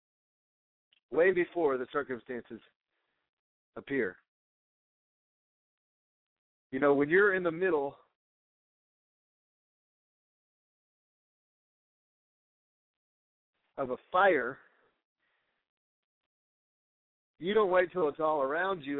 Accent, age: American, 40-59